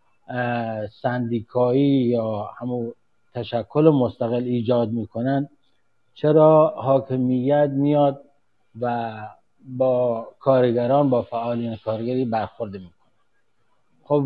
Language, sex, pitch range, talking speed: English, male, 120-145 Hz, 80 wpm